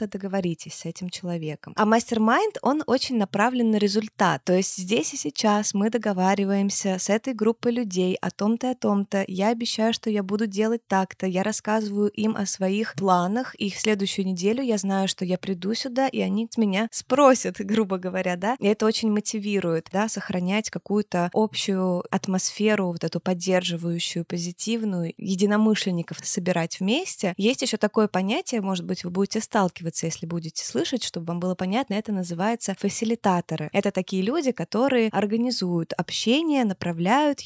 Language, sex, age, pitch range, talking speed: Russian, female, 20-39, 185-230 Hz, 155 wpm